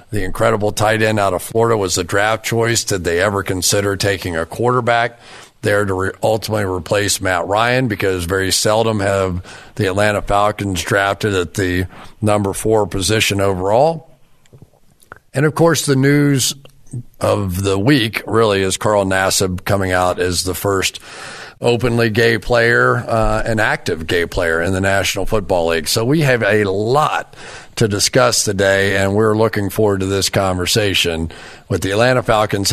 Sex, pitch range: male, 95-115 Hz